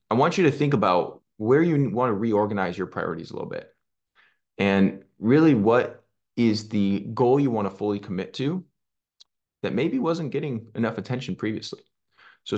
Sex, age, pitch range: male, 20-39, 100-135 Hz